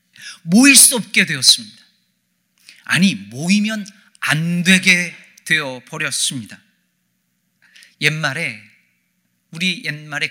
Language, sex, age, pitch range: Korean, male, 40-59, 135-200 Hz